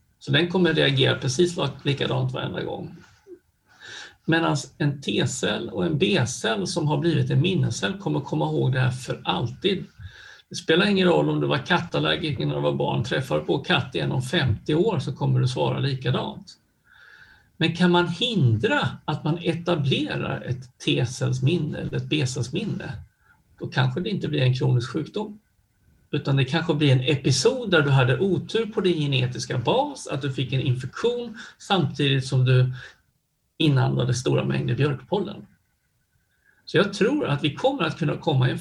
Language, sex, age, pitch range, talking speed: Swedish, male, 60-79, 125-165 Hz, 170 wpm